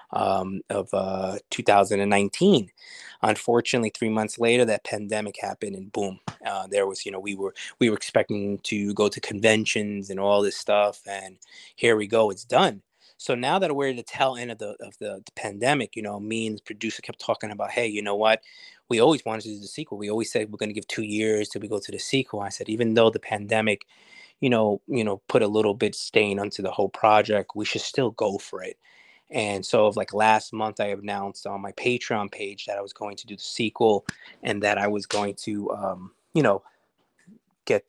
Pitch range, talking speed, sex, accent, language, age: 100-110 Hz, 220 wpm, male, American, English, 20-39